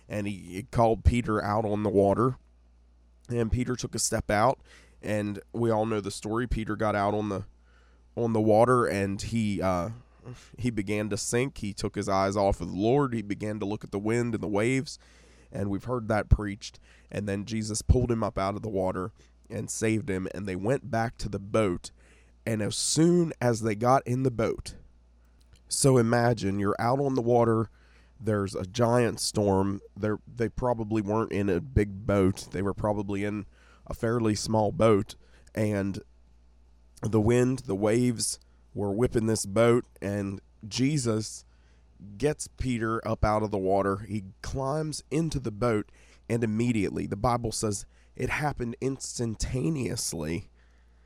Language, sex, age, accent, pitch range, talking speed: English, male, 20-39, American, 95-115 Hz, 170 wpm